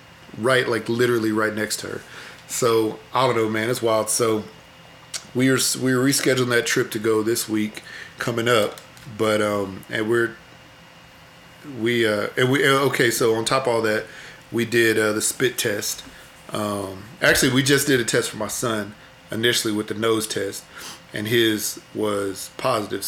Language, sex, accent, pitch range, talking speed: English, male, American, 105-120 Hz, 175 wpm